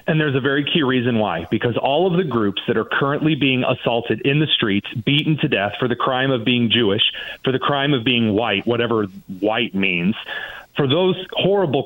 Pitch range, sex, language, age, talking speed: 115-165 Hz, male, English, 40-59, 205 wpm